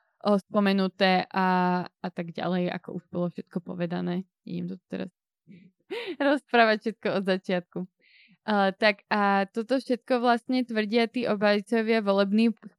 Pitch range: 185-210 Hz